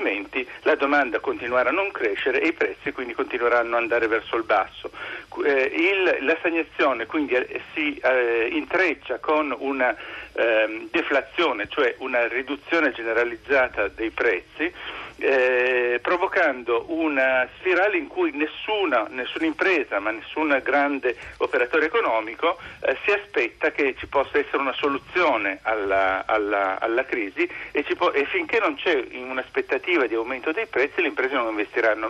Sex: male